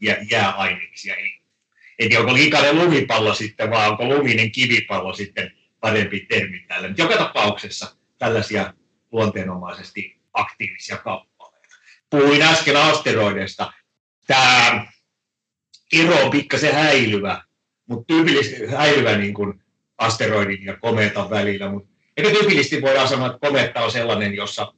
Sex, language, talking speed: male, Finnish, 110 wpm